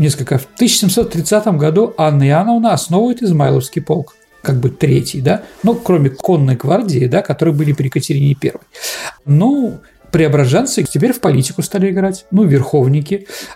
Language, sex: Russian, male